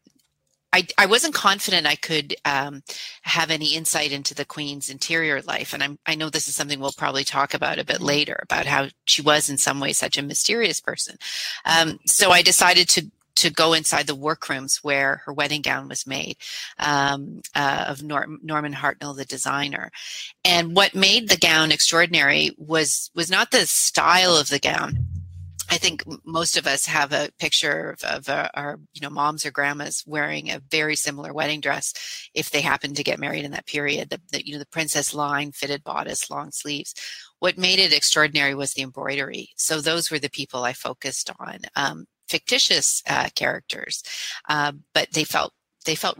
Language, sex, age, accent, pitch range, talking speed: English, female, 40-59, American, 140-160 Hz, 190 wpm